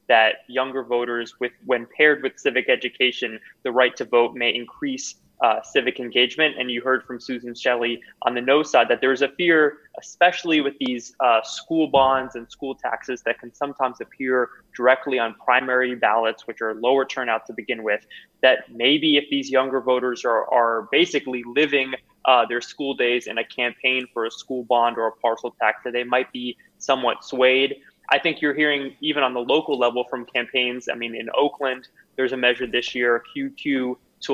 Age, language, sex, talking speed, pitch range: 20-39, English, male, 190 wpm, 120-135 Hz